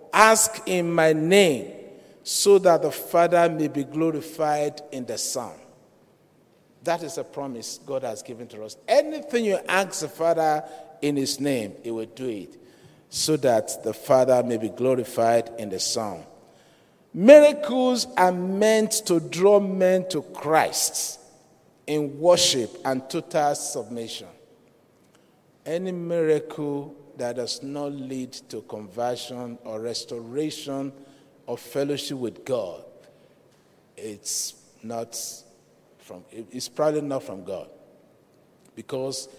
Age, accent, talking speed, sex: 50-69, Nigerian, 125 wpm, male